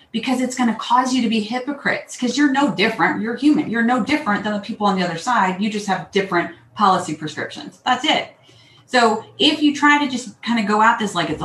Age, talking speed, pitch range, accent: 30-49, 240 wpm, 180-230 Hz, American